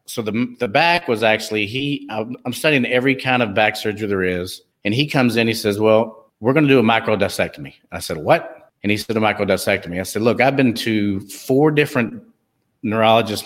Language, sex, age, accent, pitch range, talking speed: English, male, 50-69, American, 105-125 Hz, 205 wpm